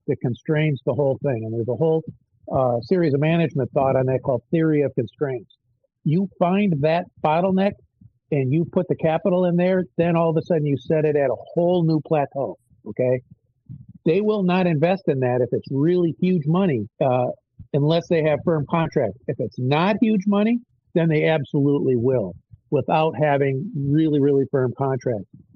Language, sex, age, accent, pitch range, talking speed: English, male, 50-69, American, 130-165 Hz, 180 wpm